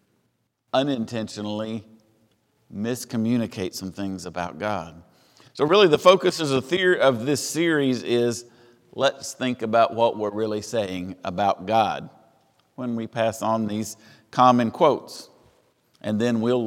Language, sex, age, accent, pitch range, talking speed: English, male, 50-69, American, 110-140 Hz, 120 wpm